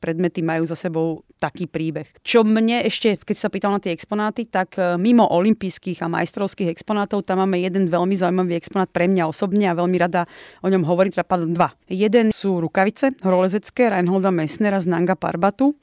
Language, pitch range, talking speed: Slovak, 175-200 Hz, 175 wpm